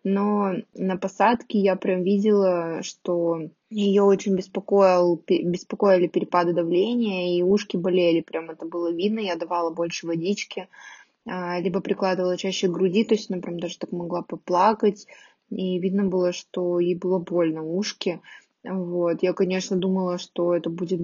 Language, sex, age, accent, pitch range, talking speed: Russian, female, 20-39, native, 175-200 Hz, 145 wpm